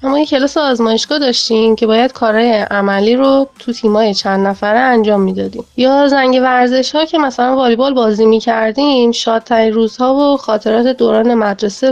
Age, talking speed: 30-49, 145 wpm